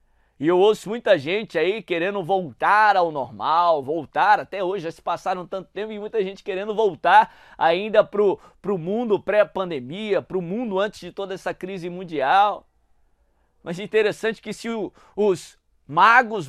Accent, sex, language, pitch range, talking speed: Brazilian, male, Portuguese, 180-220 Hz, 165 wpm